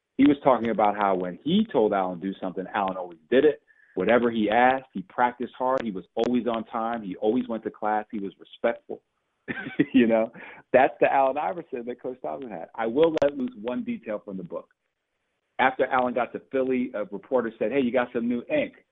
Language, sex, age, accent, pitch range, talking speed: English, male, 40-59, American, 100-140 Hz, 215 wpm